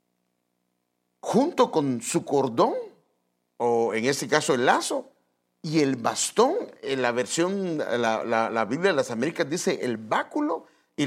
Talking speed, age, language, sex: 145 wpm, 50-69, English, male